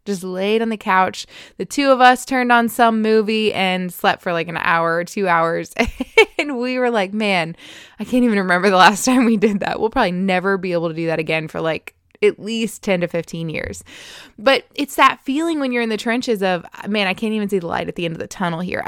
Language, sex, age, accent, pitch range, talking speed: English, female, 20-39, American, 185-240 Hz, 250 wpm